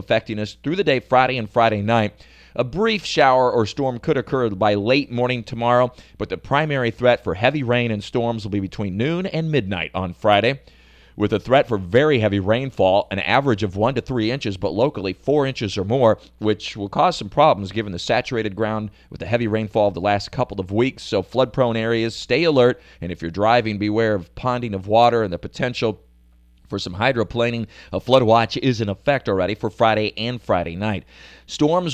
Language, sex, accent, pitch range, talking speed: English, male, American, 100-125 Hz, 205 wpm